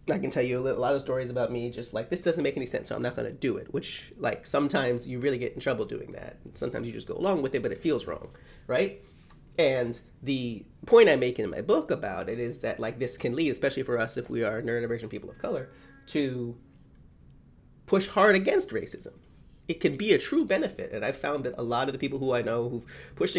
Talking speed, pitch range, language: 250 wpm, 115-145 Hz, English